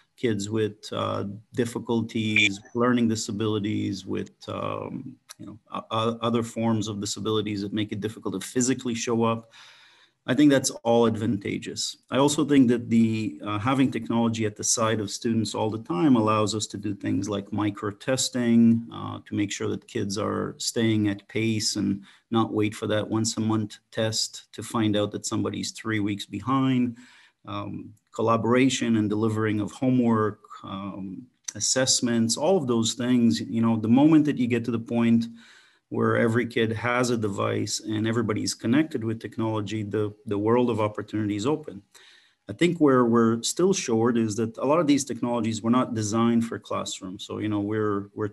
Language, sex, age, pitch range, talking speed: English, male, 40-59, 105-120 Hz, 175 wpm